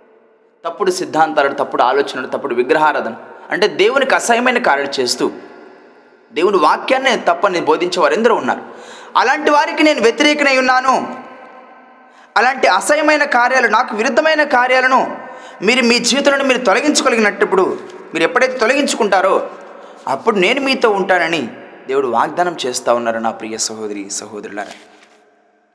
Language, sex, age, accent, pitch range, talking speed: Telugu, male, 20-39, native, 190-290 Hz, 110 wpm